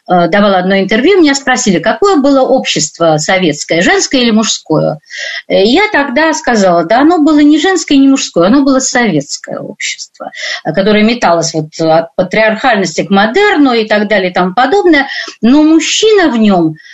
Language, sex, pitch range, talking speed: Russian, female, 190-280 Hz, 155 wpm